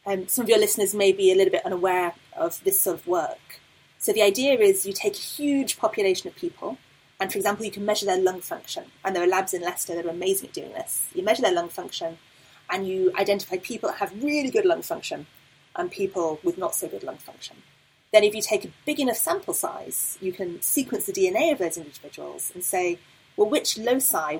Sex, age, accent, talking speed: female, 30-49, British, 230 wpm